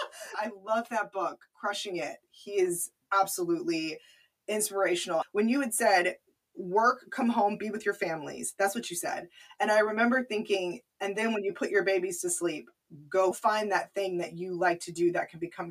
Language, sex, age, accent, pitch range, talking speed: English, female, 20-39, American, 175-215 Hz, 190 wpm